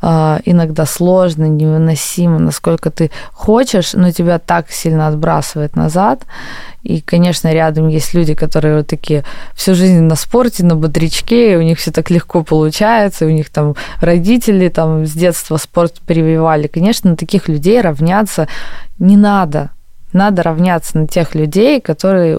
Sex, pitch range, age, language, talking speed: female, 160-185 Hz, 20-39, Russian, 140 wpm